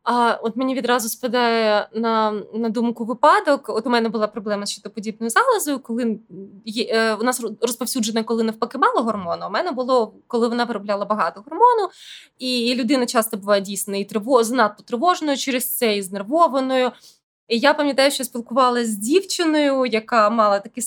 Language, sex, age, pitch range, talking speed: Ukrainian, female, 20-39, 210-260 Hz, 175 wpm